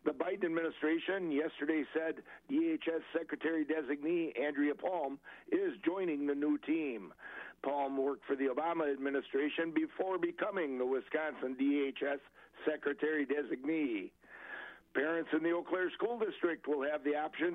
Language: English